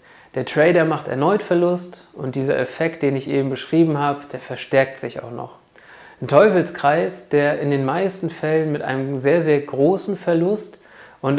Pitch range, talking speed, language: 140-175 Hz, 170 wpm, German